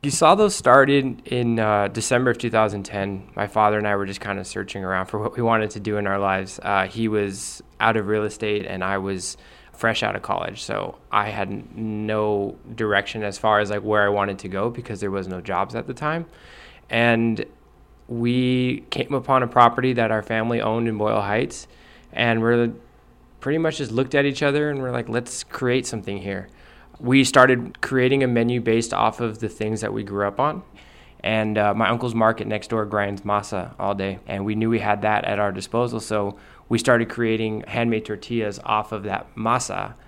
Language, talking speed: English, 205 wpm